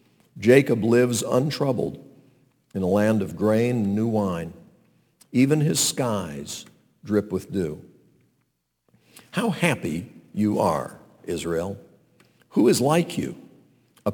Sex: male